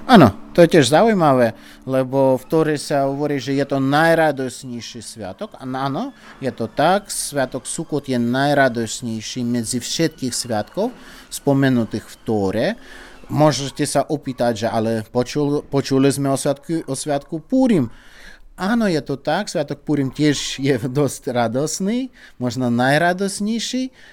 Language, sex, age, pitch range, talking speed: Slovak, male, 30-49, 120-150 Hz, 130 wpm